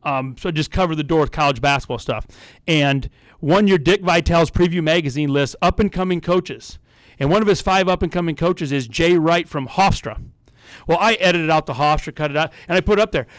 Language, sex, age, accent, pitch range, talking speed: English, male, 40-59, American, 150-195 Hz, 215 wpm